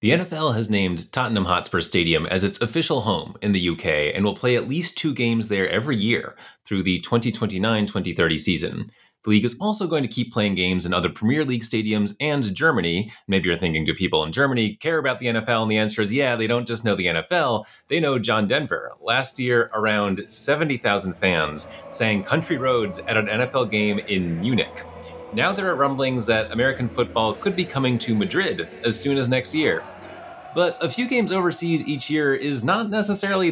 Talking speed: 200 wpm